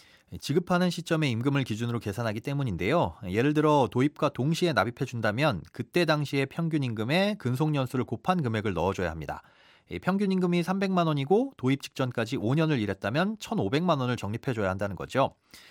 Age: 30-49